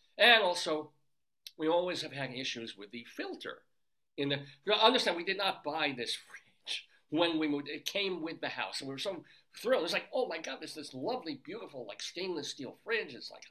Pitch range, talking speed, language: 125-175 Hz, 215 wpm, English